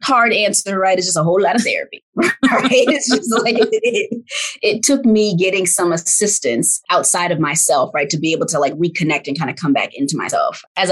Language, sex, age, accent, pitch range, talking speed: English, female, 20-39, American, 155-205 Hz, 215 wpm